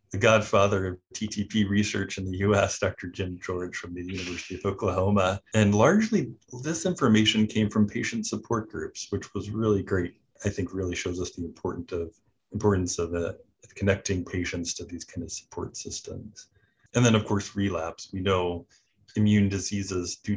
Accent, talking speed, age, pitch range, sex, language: American, 165 wpm, 30-49, 90-105 Hz, male, English